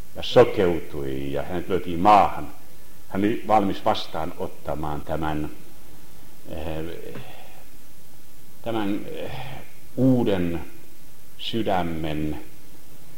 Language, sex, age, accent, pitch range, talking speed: Finnish, male, 60-79, native, 95-130 Hz, 65 wpm